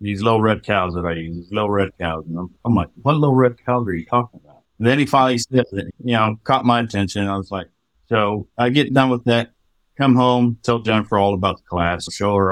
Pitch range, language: 95-120 Hz, English